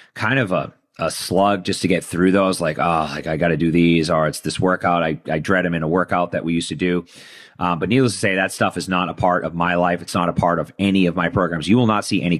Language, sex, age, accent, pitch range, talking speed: English, male, 30-49, American, 85-100 Hz, 295 wpm